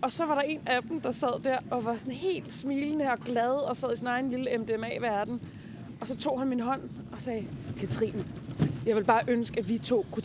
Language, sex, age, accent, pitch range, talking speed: Danish, female, 30-49, native, 220-275 Hz, 240 wpm